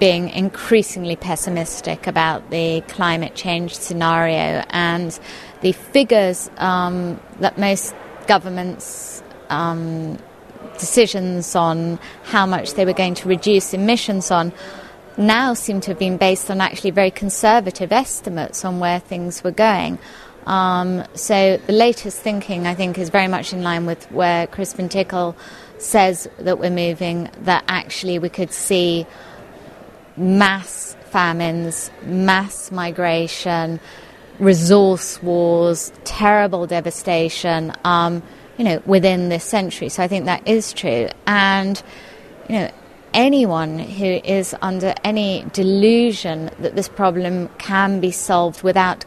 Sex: female